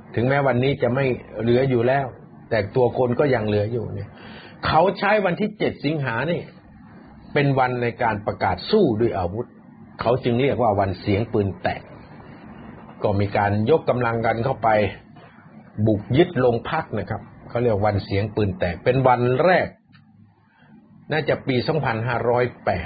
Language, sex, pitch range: Thai, male, 105-140 Hz